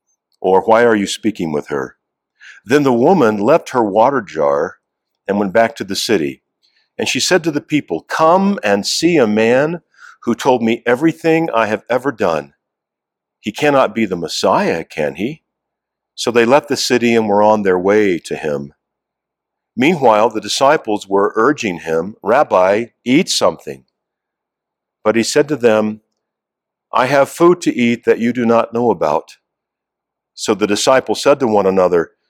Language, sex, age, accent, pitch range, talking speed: English, male, 50-69, American, 100-130 Hz, 165 wpm